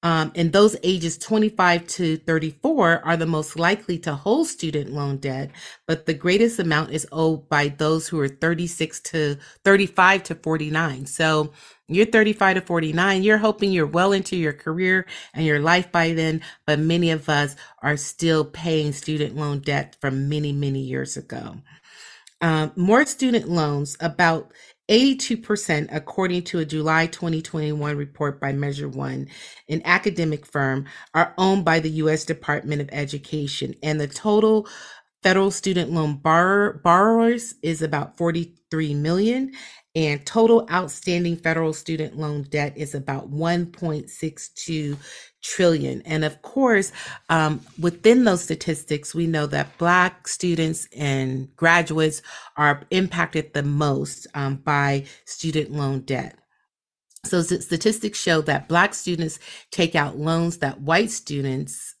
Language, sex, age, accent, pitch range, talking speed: English, female, 30-49, American, 150-180 Hz, 145 wpm